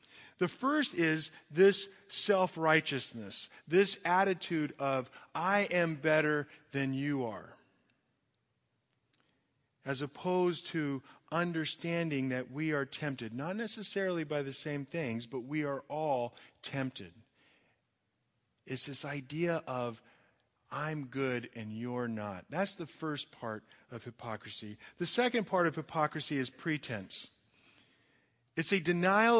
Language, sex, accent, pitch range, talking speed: English, male, American, 120-165 Hz, 120 wpm